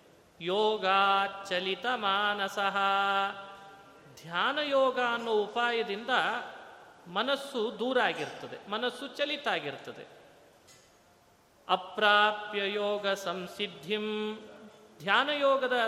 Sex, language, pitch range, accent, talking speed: male, Kannada, 215-270 Hz, native, 55 wpm